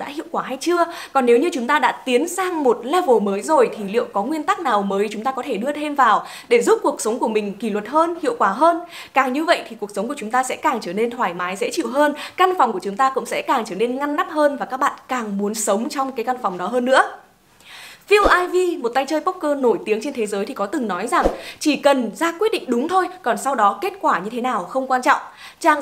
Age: 20-39